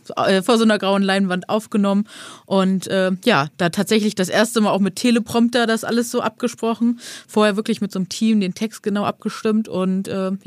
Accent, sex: German, female